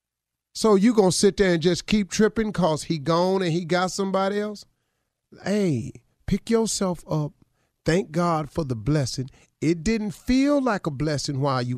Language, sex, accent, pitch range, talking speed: English, male, American, 120-180 Hz, 180 wpm